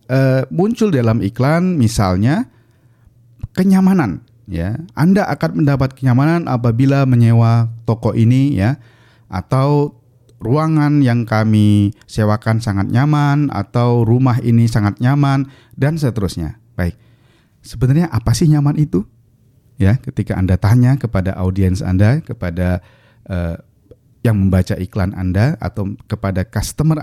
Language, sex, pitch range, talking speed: Indonesian, male, 105-130 Hz, 115 wpm